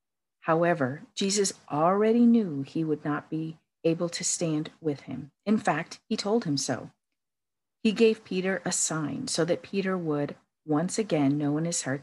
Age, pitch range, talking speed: 50-69, 145-190 Hz, 170 wpm